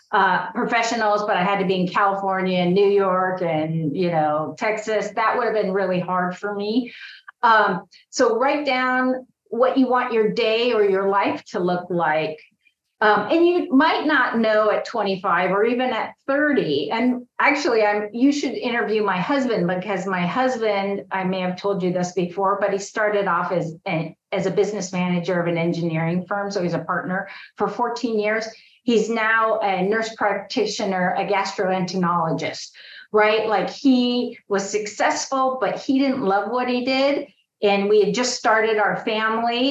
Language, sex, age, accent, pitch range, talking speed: English, female, 40-59, American, 185-235 Hz, 175 wpm